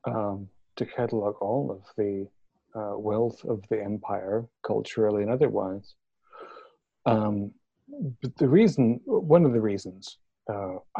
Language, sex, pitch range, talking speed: English, male, 100-125 Hz, 125 wpm